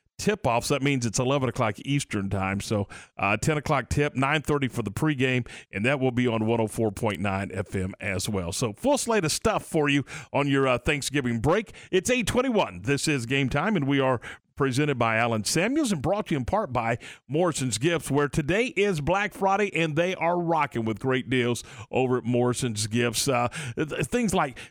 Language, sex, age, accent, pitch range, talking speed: English, male, 40-59, American, 125-170 Hz, 190 wpm